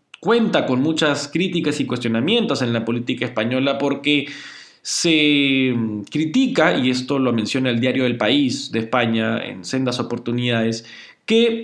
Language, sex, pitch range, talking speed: Spanish, male, 125-170 Hz, 140 wpm